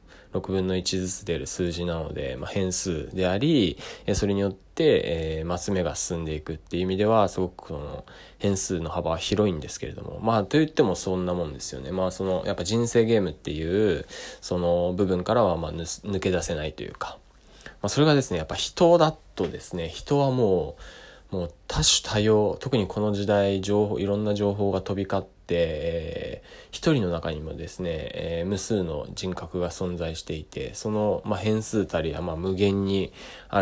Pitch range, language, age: 85-105 Hz, Japanese, 20-39